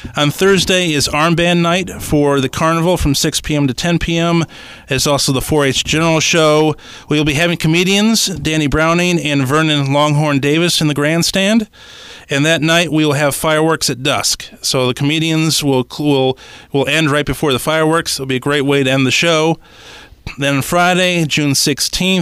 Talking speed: 175 wpm